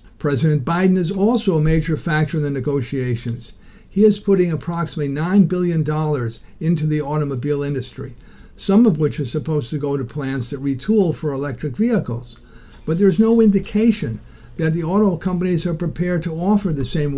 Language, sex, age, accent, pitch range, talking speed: English, male, 50-69, American, 140-175 Hz, 170 wpm